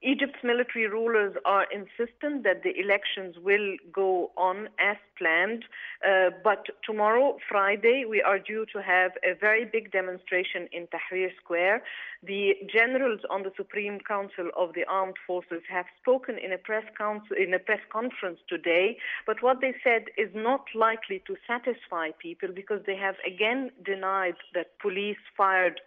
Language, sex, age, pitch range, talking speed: English, female, 50-69, 185-235 Hz, 150 wpm